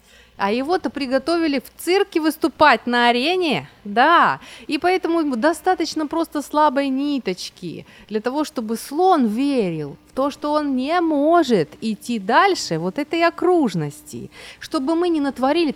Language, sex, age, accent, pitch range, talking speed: Ukrainian, female, 30-49, native, 185-280 Hz, 135 wpm